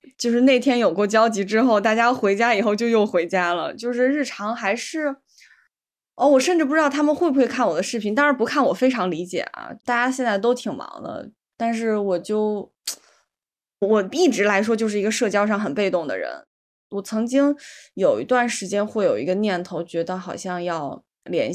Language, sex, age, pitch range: Chinese, female, 20-39, 185-255 Hz